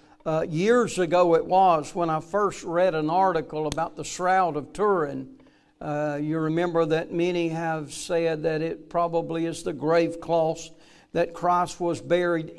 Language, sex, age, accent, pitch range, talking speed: English, male, 60-79, American, 160-190 Hz, 160 wpm